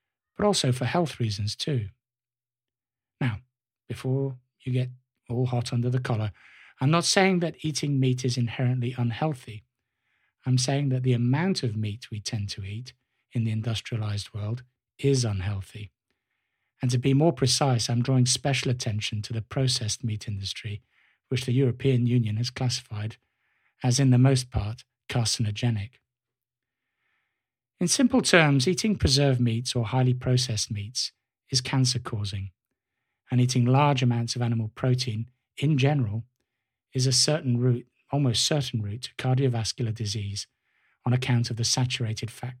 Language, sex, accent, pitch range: English, male, British, 115-130 Hz